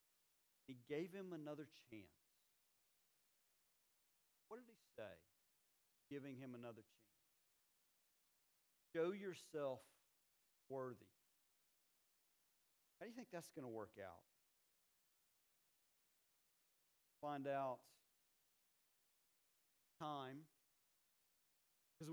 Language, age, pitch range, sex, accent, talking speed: English, 50-69, 125-175 Hz, male, American, 80 wpm